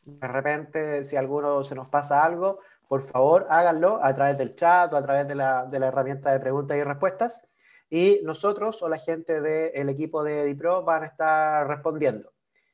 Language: Spanish